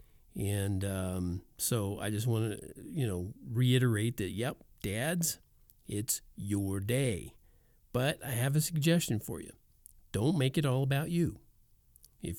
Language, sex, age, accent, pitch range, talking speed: English, male, 50-69, American, 105-140 Hz, 145 wpm